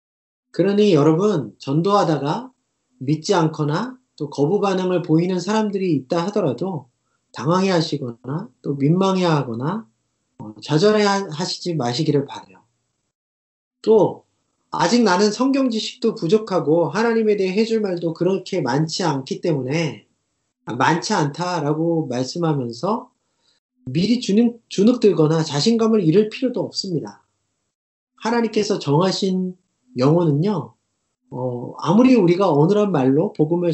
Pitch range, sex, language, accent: 150-215 Hz, male, Korean, native